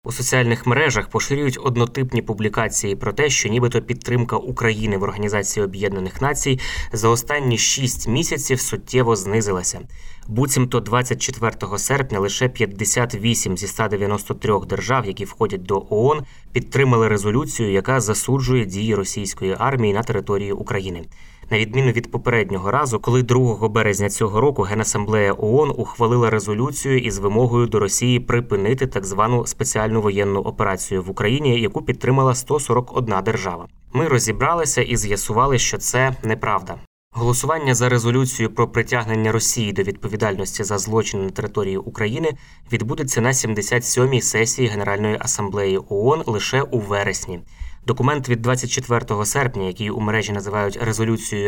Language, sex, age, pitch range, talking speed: Ukrainian, male, 20-39, 105-125 Hz, 130 wpm